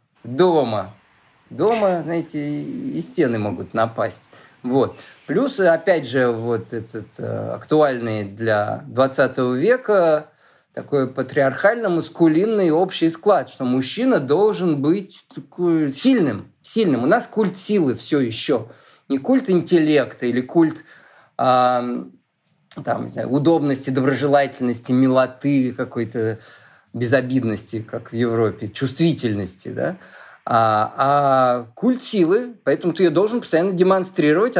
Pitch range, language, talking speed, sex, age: 130-180 Hz, Russian, 110 wpm, male, 20-39